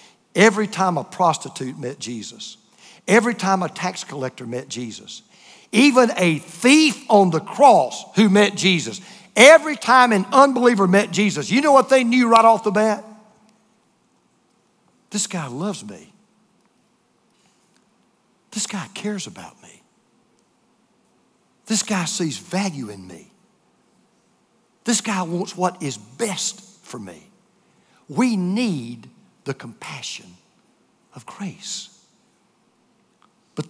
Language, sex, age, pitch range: English, male, 60-79, 185-235 Hz